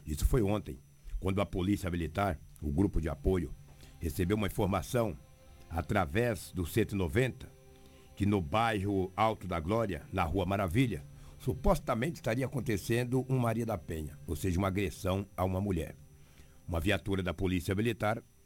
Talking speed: 145 wpm